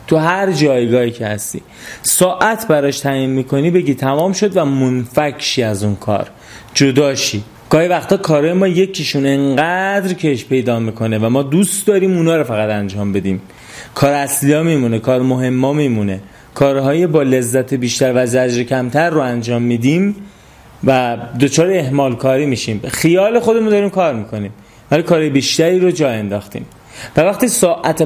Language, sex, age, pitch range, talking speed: Persian, male, 30-49, 125-165 Hz, 150 wpm